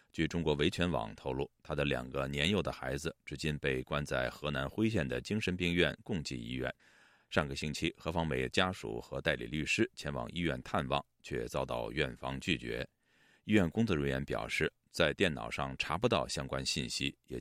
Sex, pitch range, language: male, 70-90 Hz, Chinese